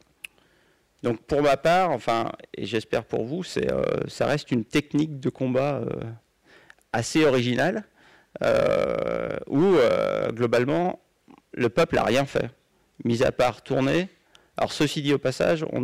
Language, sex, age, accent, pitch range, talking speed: French, male, 40-59, French, 125-165 Hz, 150 wpm